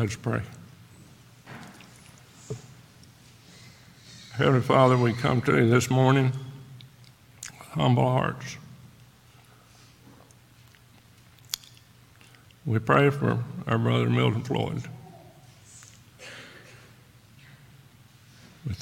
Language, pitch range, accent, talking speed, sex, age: English, 115-130 Hz, American, 65 wpm, male, 60-79